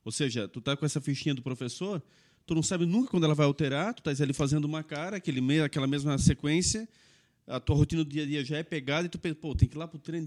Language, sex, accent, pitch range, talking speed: Portuguese, male, Brazilian, 145-185 Hz, 285 wpm